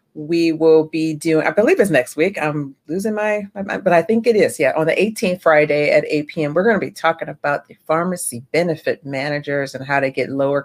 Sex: female